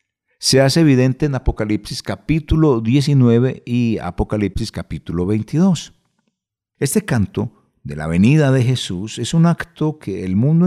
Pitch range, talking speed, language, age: 90-130 Hz, 135 wpm, Spanish, 50-69